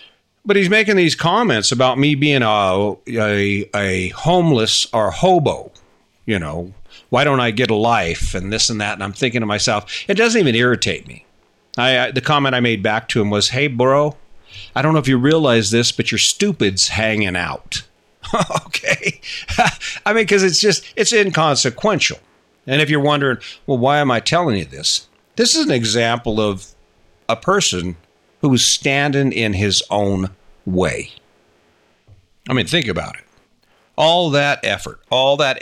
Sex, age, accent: male, 50-69, American